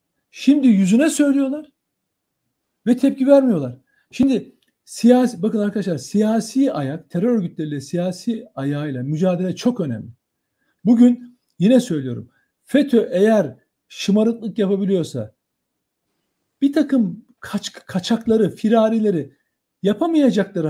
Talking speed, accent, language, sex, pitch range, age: 95 wpm, native, Turkish, male, 185-260 Hz, 60-79